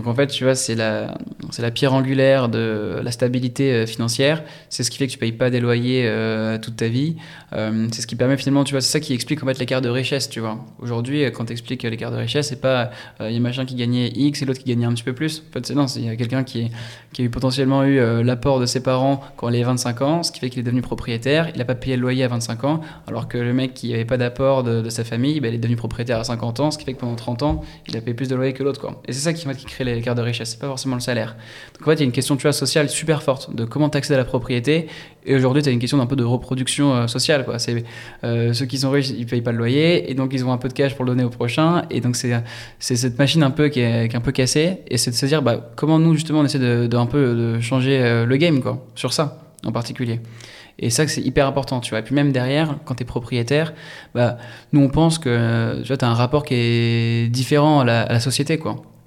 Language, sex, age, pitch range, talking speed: French, male, 20-39, 120-140 Hz, 300 wpm